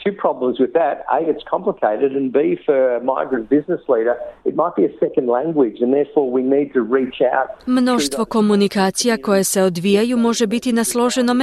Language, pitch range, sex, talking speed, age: Croatian, 180-245 Hz, female, 185 wpm, 40-59